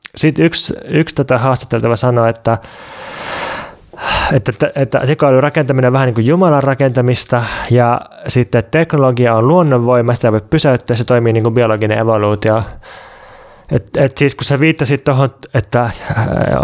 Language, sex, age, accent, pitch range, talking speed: Finnish, male, 20-39, native, 110-130 Hz, 145 wpm